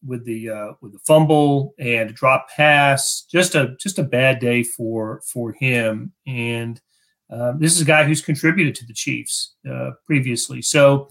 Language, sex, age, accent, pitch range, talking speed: English, male, 40-59, American, 130-160 Hz, 180 wpm